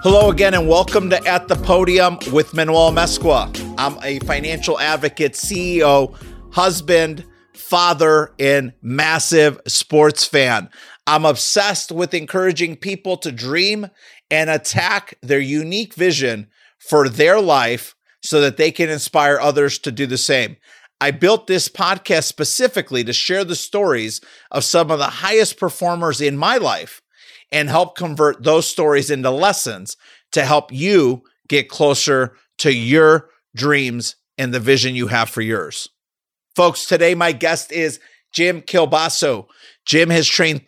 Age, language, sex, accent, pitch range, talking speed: 50-69, English, male, American, 145-175 Hz, 145 wpm